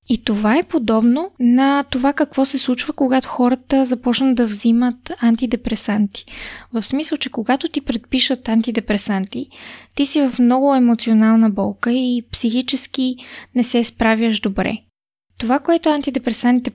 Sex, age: female, 20-39